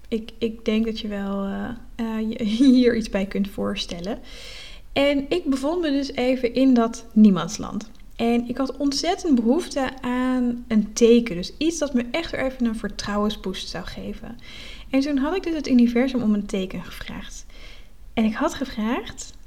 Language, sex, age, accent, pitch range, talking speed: Dutch, female, 10-29, Dutch, 210-260 Hz, 170 wpm